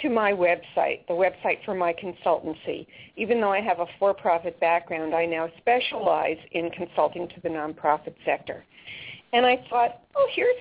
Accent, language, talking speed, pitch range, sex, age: American, English, 165 wpm, 175-255 Hz, female, 50-69